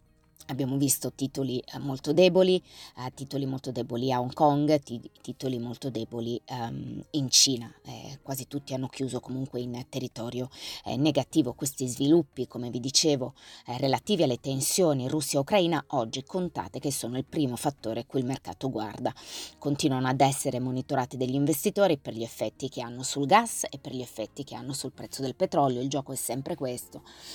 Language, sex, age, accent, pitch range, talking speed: Italian, female, 20-39, native, 125-145 Hz, 160 wpm